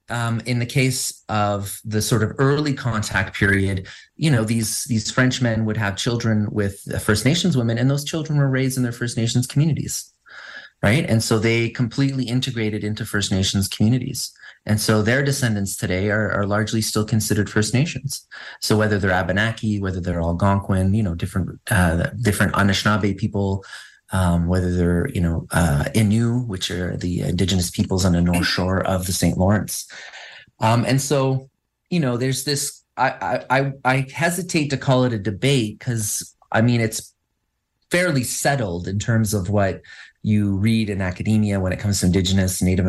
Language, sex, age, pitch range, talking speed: English, male, 30-49, 100-130 Hz, 175 wpm